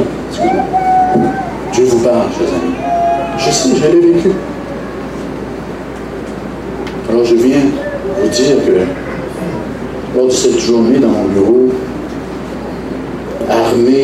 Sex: male